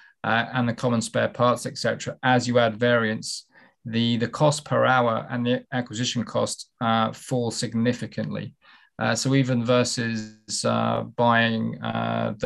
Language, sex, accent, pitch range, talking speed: English, male, British, 115-130 Hz, 150 wpm